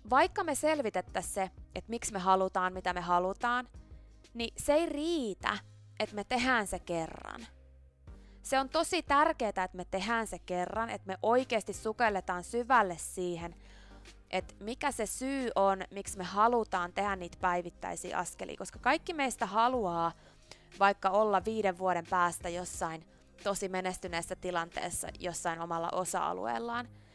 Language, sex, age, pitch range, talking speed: Finnish, female, 20-39, 175-230 Hz, 140 wpm